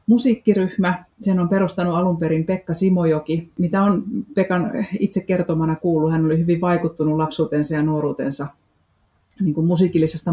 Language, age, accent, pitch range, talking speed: Finnish, 30-49, native, 160-190 Hz, 140 wpm